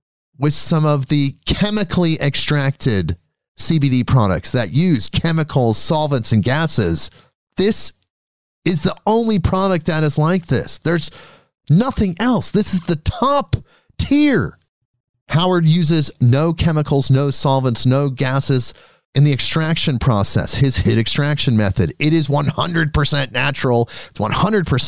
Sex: male